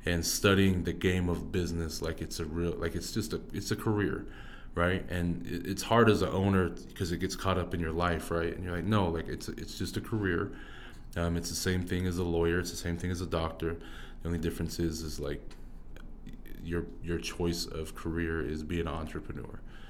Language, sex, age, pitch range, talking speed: English, male, 20-39, 80-90 Hz, 220 wpm